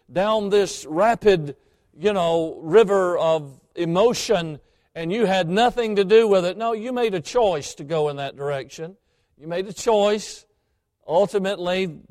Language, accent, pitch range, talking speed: English, American, 165-220 Hz, 155 wpm